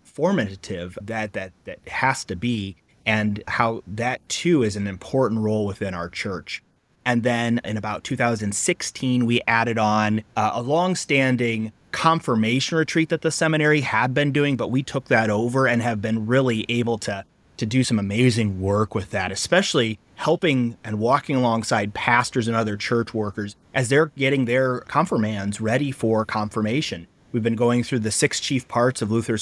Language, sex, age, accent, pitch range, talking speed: English, male, 30-49, American, 110-135 Hz, 170 wpm